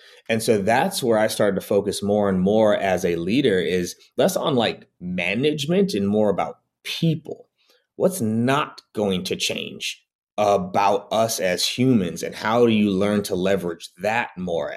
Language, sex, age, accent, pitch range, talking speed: English, male, 30-49, American, 95-120 Hz, 165 wpm